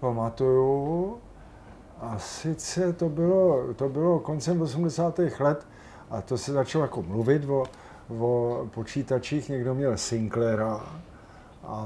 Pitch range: 110-130 Hz